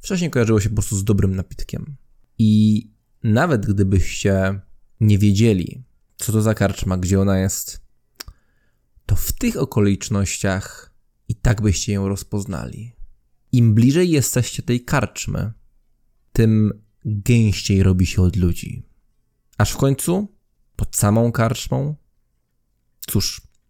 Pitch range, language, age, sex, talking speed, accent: 100-120 Hz, English, 20-39, male, 120 wpm, Polish